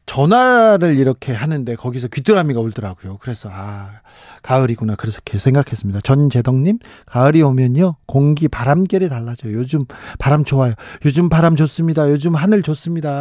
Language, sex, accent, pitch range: Korean, male, native, 120-160 Hz